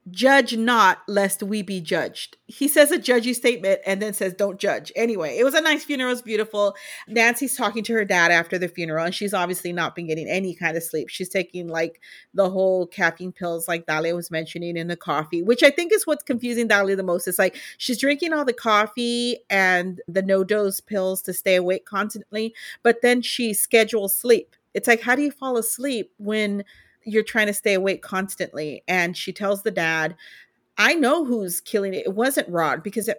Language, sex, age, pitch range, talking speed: English, female, 40-59, 180-225 Hz, 210 wpm